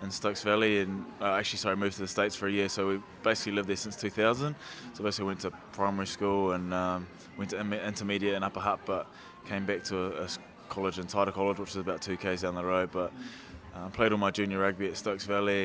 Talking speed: 240 wpm